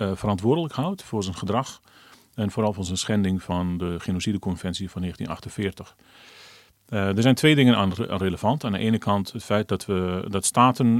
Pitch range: 95-120 Hz